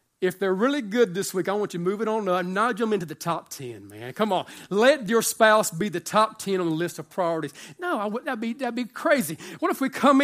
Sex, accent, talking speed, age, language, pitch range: male, American, 280 wpm, 40-59, English, 210-285 Hz